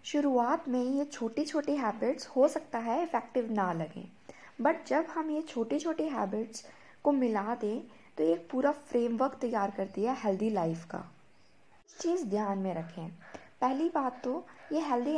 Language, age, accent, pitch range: Hindi, 20-39, native, 205-280 Hz